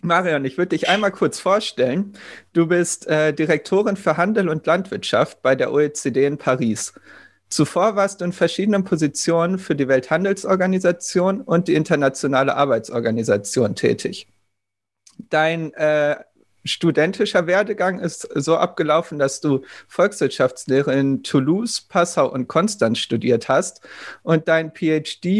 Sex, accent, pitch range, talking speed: male, German, 140-180 Hz, 130 wpm